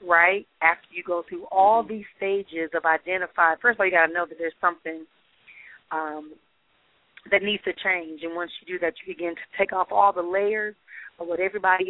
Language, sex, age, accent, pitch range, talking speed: English, female, 40-59, American, 175-215 Hz, 205 wpm